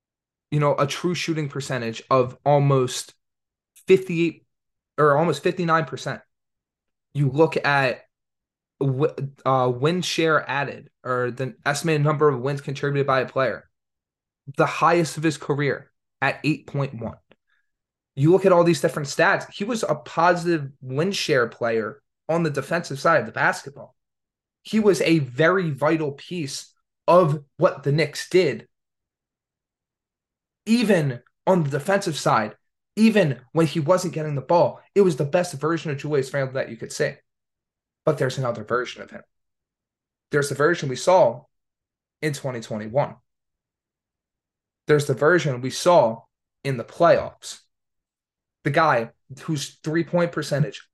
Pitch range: 135-165 Hz